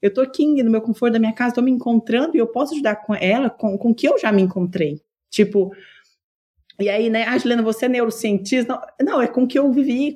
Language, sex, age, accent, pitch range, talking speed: Portuguese, female, 20-39, Brazilian, 185-245 Hz, 260 wpm